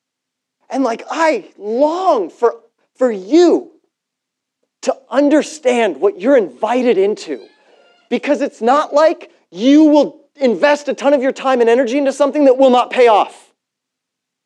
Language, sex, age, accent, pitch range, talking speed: English, male, 30-49, American, 205-300 Hz, 140 wpm